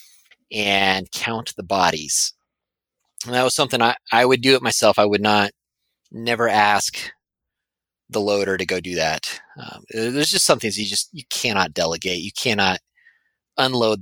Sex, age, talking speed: male, 30-49, 165 wpm